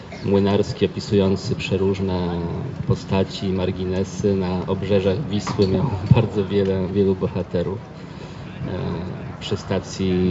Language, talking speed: Polish, 85 wpm